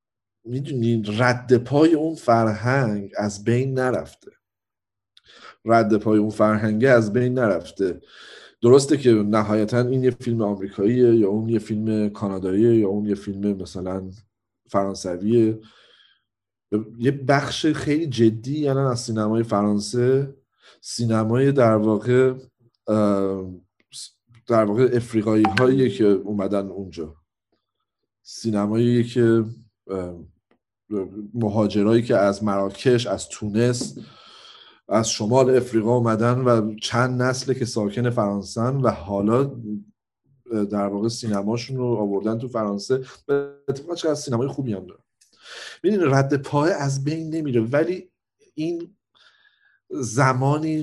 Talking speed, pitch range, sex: 110 wpm, 105-130 Hz, male